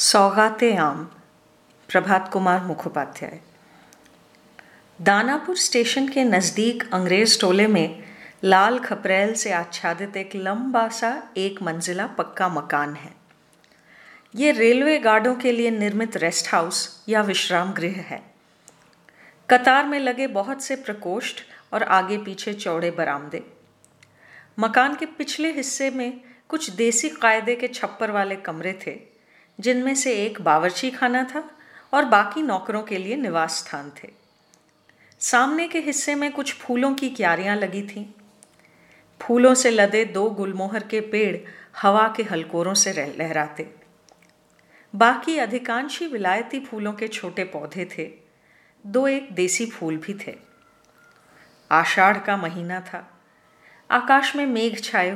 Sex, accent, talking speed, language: female, native, 130 wpm, Hindi